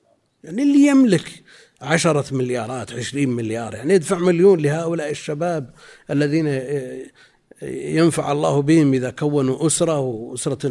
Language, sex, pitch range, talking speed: Arabic, male, 130-170 Hz, 110 wpm